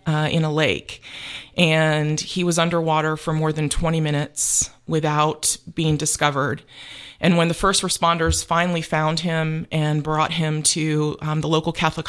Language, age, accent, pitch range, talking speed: English, 30-49, American, 145-165 Hz, 160 wpm